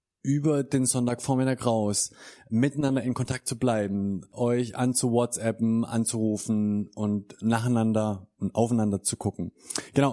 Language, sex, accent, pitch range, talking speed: German, male, German, 120-150 Hz, 115 wpm